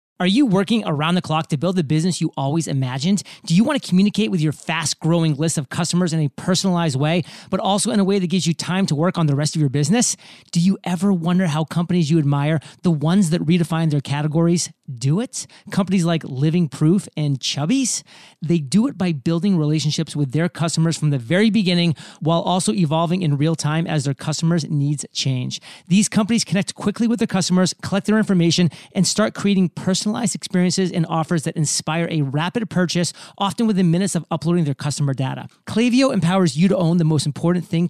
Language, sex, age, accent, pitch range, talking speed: English, male, 30-49, American, 155-190 Hz, 205 wpm